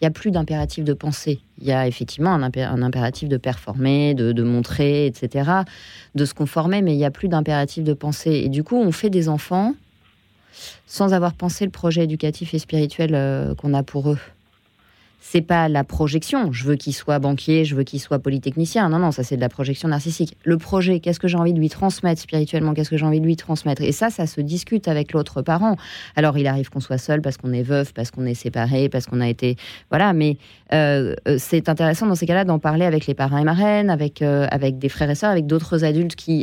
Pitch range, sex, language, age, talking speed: 145-185 Hz, female, French, 30-49, 230 wpm